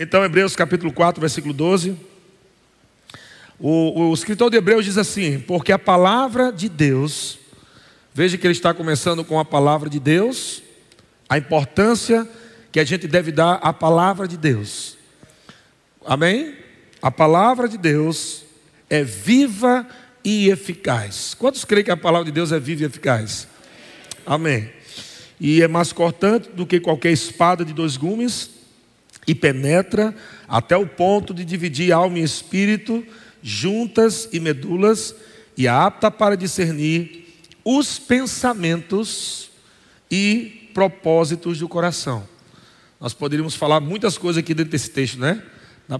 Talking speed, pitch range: 140 wpm, 150-200 Hz